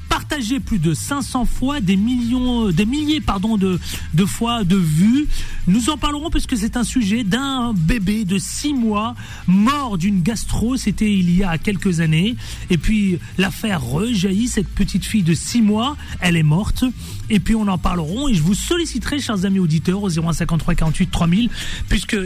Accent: French